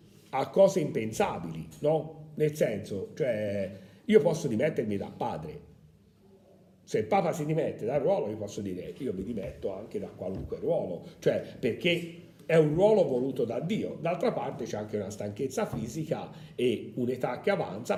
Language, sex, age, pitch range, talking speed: Italian, male, 50-69, 110-175 Hz, 165 wpm